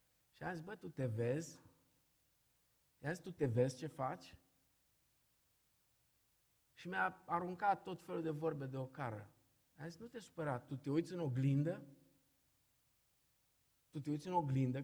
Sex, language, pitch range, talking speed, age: male, Romanian, 125-170 Hz, 145 wpm, 50-69